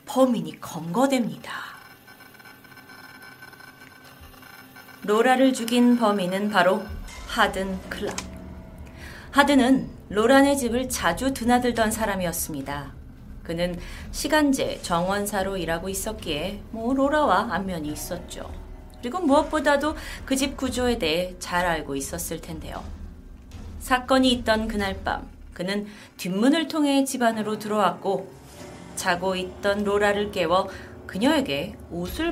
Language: Korean